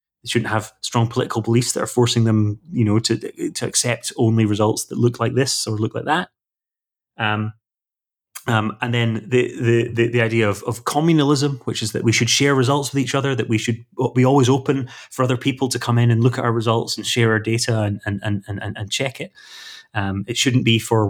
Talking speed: 225 wpm